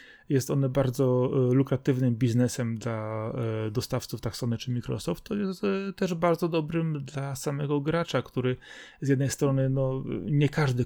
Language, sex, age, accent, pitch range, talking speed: Polish, male, 30-49, native, 125-165 Hz, 140 wpm